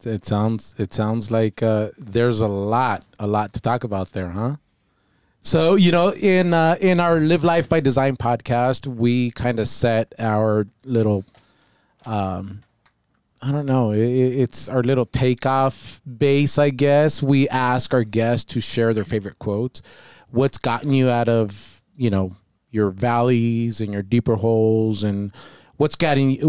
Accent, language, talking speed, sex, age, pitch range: American, English, 160 wpm, male, 30-49, 110-140 Hz